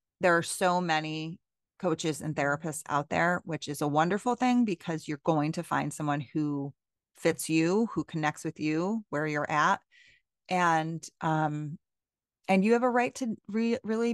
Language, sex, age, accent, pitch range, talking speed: English, female, 30-49, American, 155-190 Hz, 165 wpm